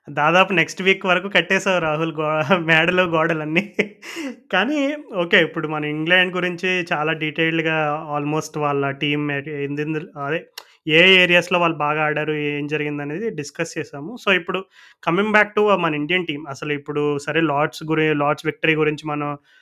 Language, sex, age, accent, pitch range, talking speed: Telugu, male, 20-39, native, 155-180 Hz, 150 wpm